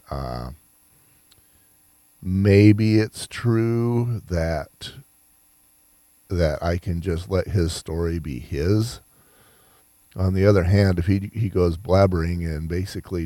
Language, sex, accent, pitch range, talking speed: English, male, American, 70-95 Hz, 115 wpm